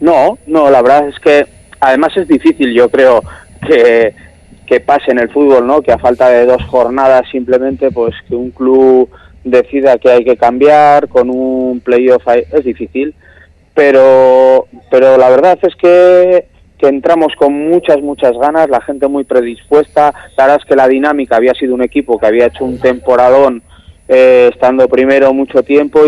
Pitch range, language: 125-150 Hz, Spanish